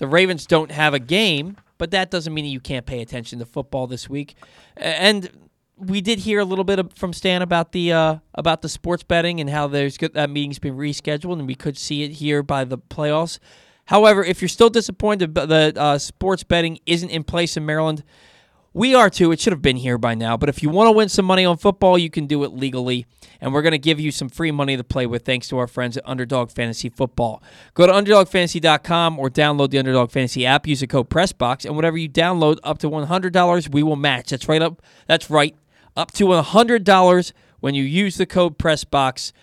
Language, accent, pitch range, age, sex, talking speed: English, American, 140-180 Hz, 20-39, male, 225 wpm